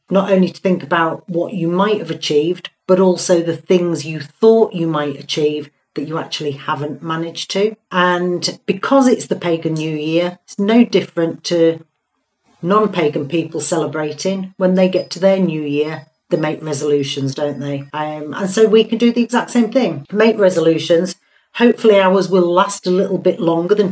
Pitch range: 150-185 Hz